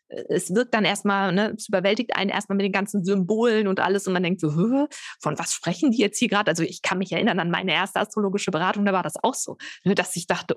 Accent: German